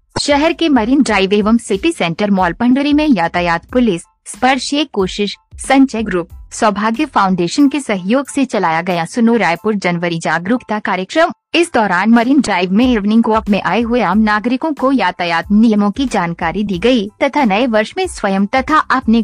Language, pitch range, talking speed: Hindi, 180-250 Hz, 170 wpm